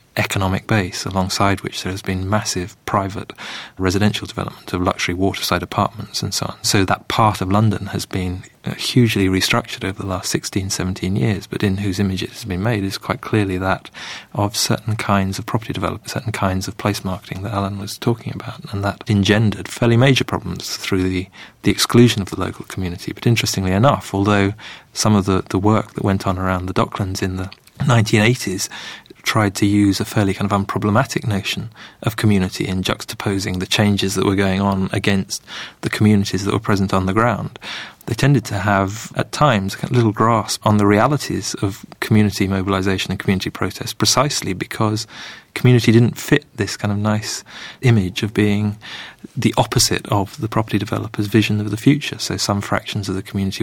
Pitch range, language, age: 95-110 Hz, English, 30-49